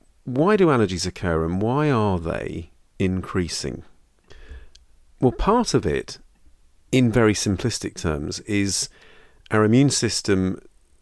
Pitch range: 80-105 Hz